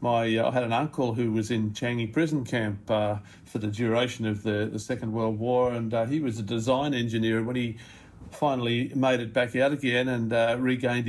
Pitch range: 115-125 Hz